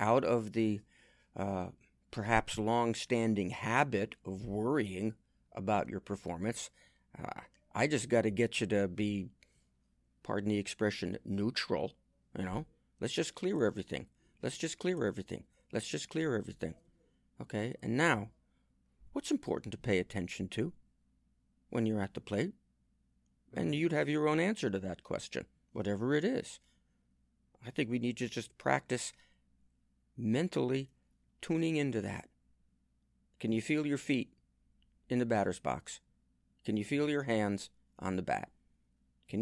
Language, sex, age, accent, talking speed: English, male, 50-69, American, 145 wpm